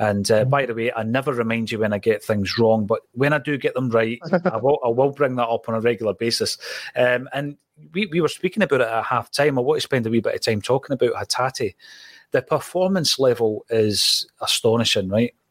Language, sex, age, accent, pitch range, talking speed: English, male, 30-49, British, 120-150 Hz, 235 wpm